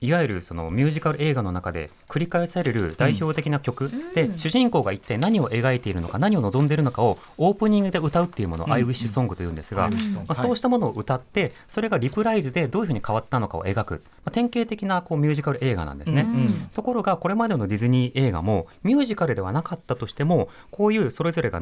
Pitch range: 105-175 Hz